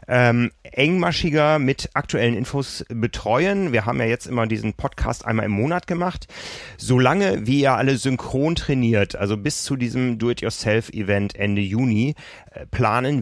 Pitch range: 110-130 Hz